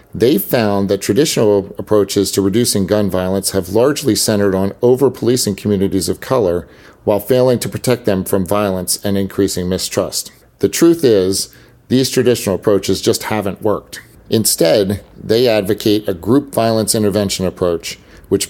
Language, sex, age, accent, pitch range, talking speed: English, male, 50-69, American, 95-120 Hz, 145 wpm